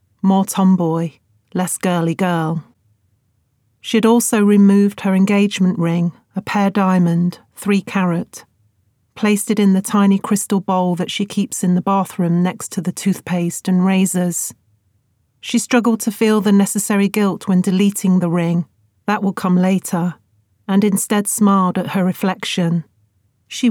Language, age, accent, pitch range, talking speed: English, 40-59, British, 165-200 Hz, 145 wpm